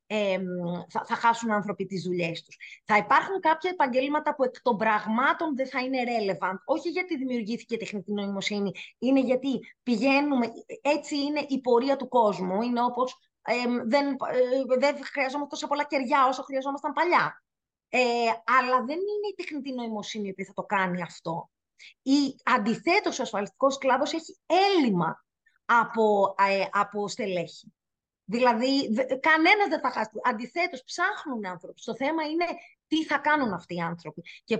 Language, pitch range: Greek, 215-300 Hz